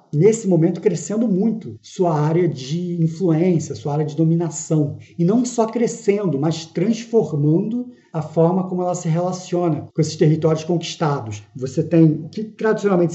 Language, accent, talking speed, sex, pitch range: Portuguese, Brazilian, 150 wpm, male, 155-190 Hz